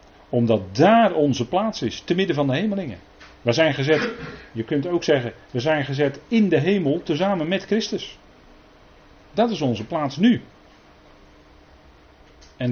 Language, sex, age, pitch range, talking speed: Dutch, male, 40-59, 115-175 Hz, 150 wpm